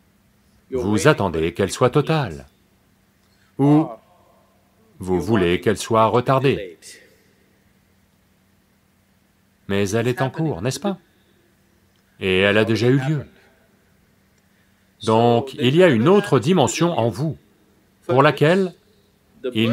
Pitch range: 100-150 Hz